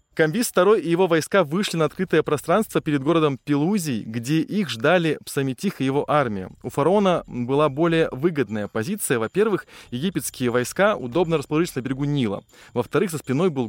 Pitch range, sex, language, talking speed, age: 120-160 Hz, male, Russian, 160 wpm, 20-39